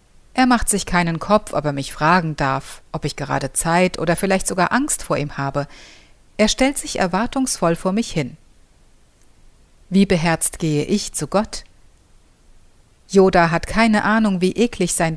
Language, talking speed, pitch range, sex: German, 160 wpm, 155-215 Hz, female